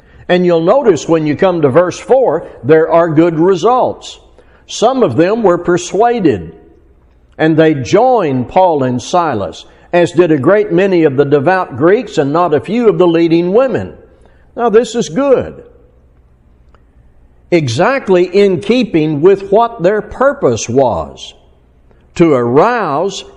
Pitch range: 140-195 Hz